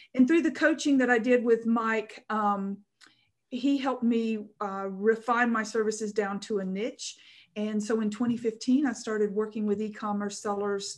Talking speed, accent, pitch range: 170 wpm, American, 205-240 Hz